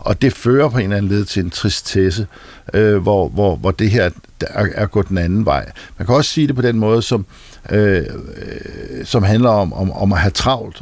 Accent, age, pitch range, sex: native, 60-79, 100-130 Hz, male